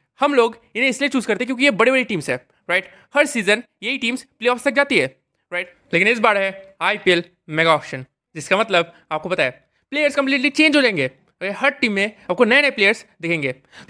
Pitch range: 170-245 Hz